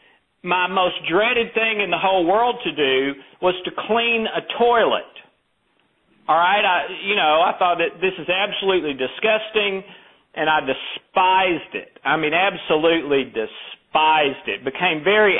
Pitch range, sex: 160-225 Hz, male